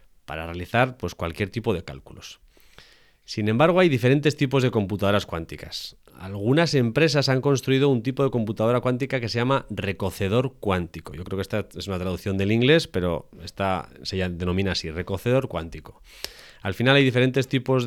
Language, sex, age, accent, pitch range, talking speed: Spanish, male, 30-49, Spanish, 95-135 Hz, 170 wpm